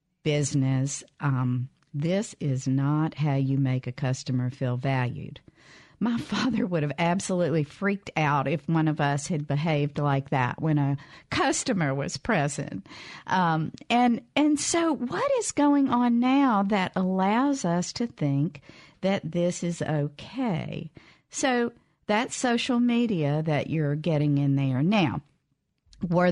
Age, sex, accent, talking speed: 50-69, female, American, 140 wpm